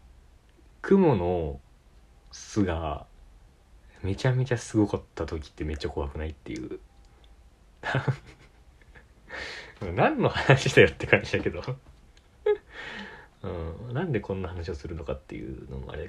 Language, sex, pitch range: Japanese, male, 70-105 Hz